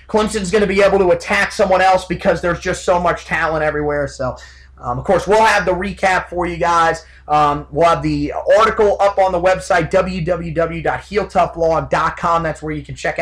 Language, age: English, 30-49